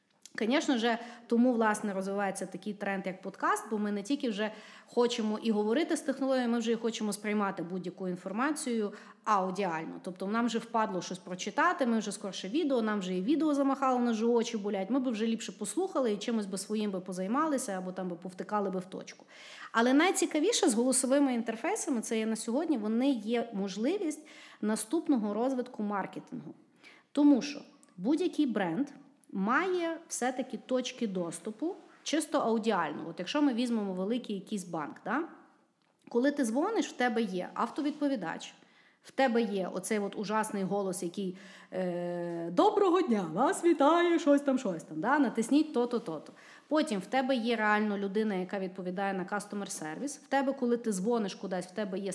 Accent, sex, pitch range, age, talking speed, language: native, female, 195-275 Hz, 30-49, 165 wpm, Ukrainian